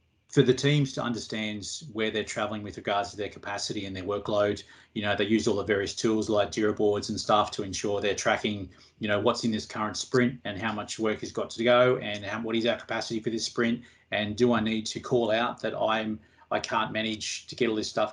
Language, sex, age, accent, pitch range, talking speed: English, male, 30-49, Australian, 105-120 Hz, 245 wpm